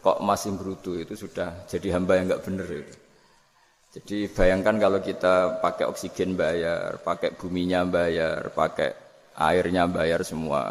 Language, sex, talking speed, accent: Indonesian, male, 140 wpm, native